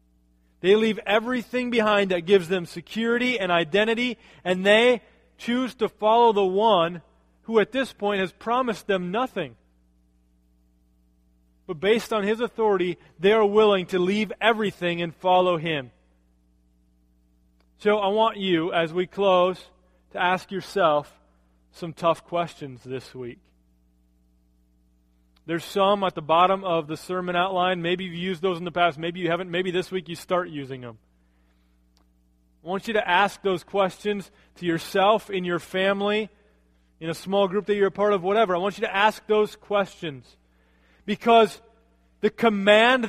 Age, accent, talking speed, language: 30-49, American, 155 wpm, English